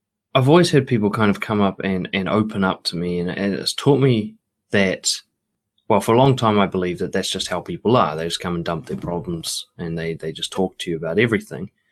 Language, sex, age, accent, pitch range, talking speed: English, male, 20-39, Australian, 90-125 Hz, 245 wpm